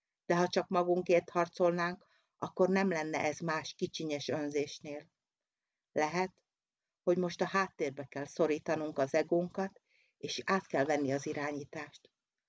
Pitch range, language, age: 155-180 Hz, Hungarian, 50-69